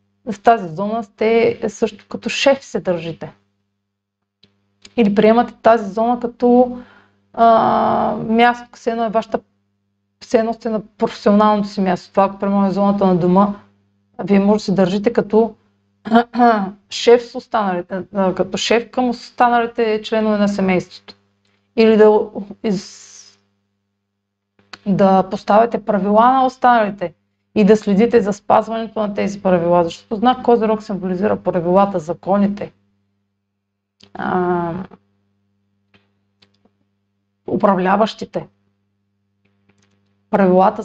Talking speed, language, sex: 100 wpm, Bulgarian, female